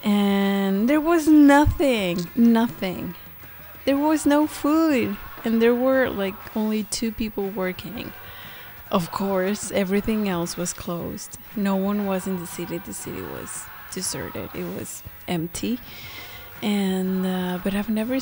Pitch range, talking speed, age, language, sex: 185-225 Hz, 135 wpm, 30-49, English, female